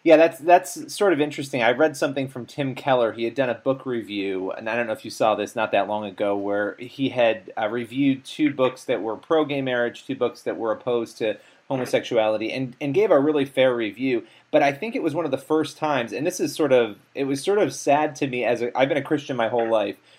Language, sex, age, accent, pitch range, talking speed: English, male, 30-49, American, 115-145 Hz, 255 wpm